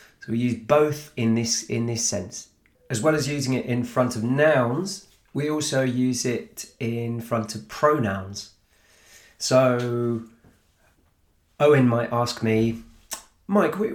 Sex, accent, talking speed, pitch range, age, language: male, British, 135 wpm, 110-150 Hz, 30-49, English